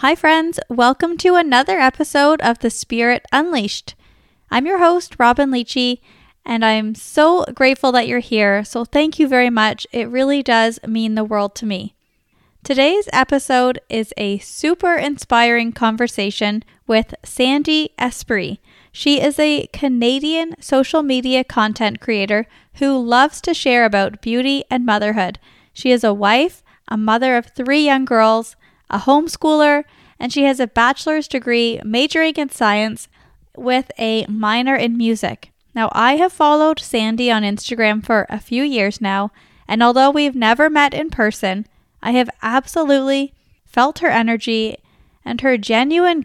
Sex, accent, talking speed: female, American, 150 wpm